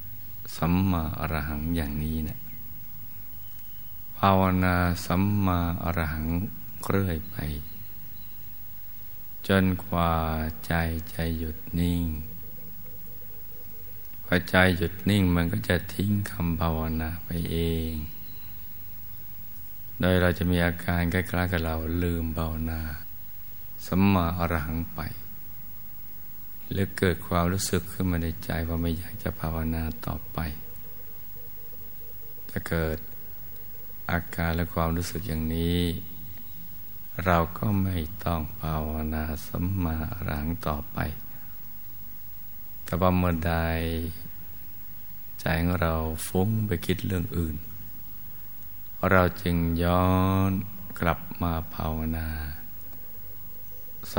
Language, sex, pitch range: Thai, male, 80-90 Hz